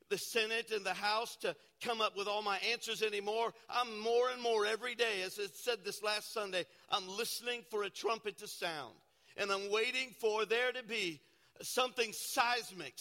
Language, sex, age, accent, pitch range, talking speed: English, male, 50-69, American, 195-240 Hz, 190 wpm